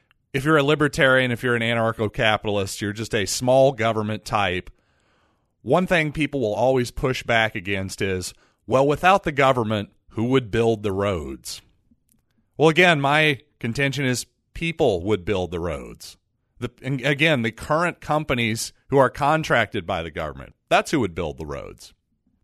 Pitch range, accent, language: 110-145 Hz, American, English